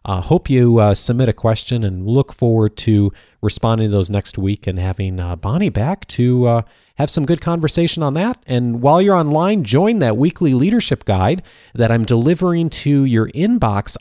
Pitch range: 105-135 Hz